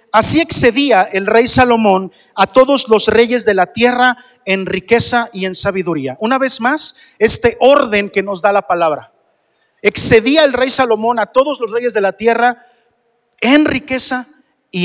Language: Spanish